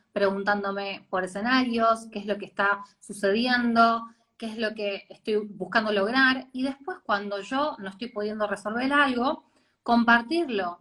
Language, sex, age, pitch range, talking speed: Spanish, female, 20-39, 205-275 Hz, 145 wpm